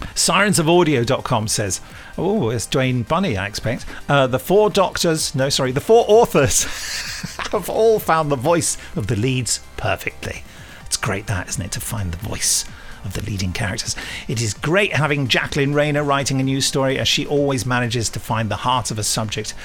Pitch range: 115-155 Hz